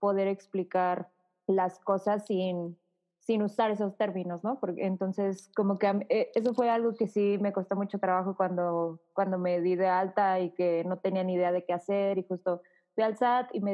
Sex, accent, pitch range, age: female, Mexican, 185-210 Hz, 20-39